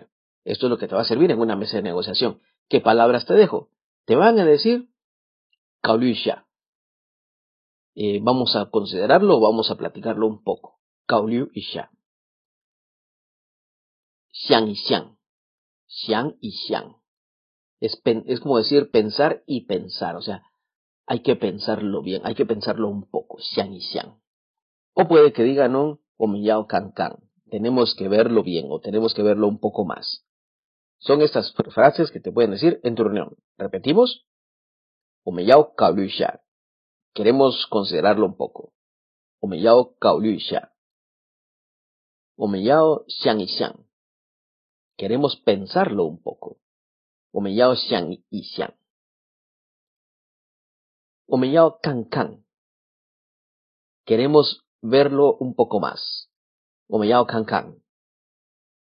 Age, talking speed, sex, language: 40-59, 125 wpm, male, English